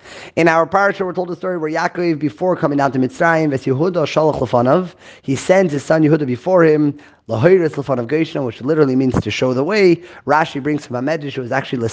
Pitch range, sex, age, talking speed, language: 135-170 Hz, male, 30-49, 175 wpm, English